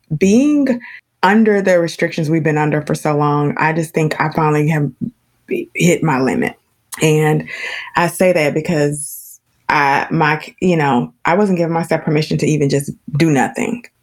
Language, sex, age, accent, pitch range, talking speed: English, female, 20-39, American, 155-190 Hz, 165 wpm